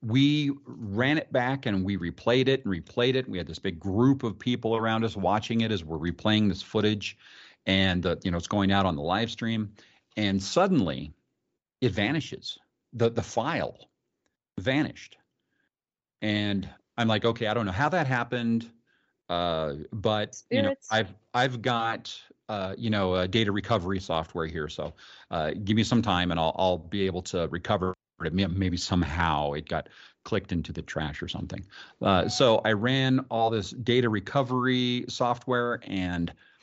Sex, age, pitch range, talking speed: male, 40-59, 90-120 Hz, 170 wpm